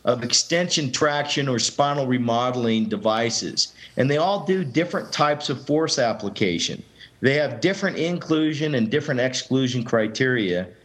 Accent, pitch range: American, 125-170 Hz